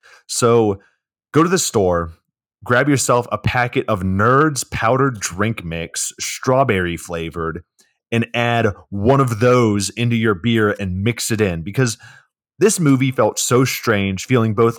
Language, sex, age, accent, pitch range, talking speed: English, male, 30-49, American, 95-125 Hz, 145 wpm